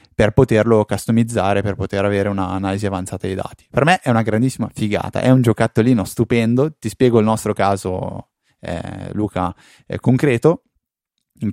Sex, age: male, 20-39